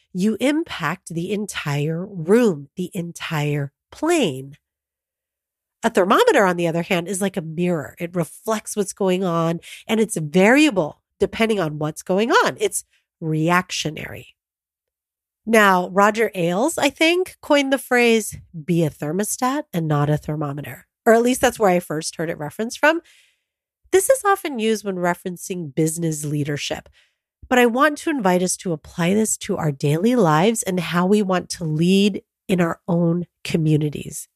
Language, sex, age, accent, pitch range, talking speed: English, female, 30-49, American, 165-235 Hz, 155 wpm